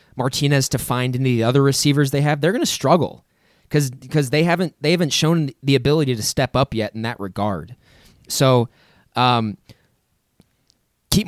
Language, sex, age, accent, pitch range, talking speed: English, male, 20-39, American, 125-150 Hz, 175 wpm